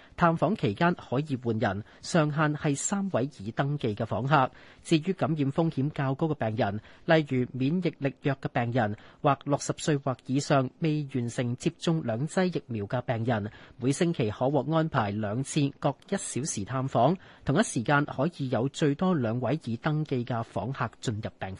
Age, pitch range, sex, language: 30-49, 120-160 Hz, male, Chinese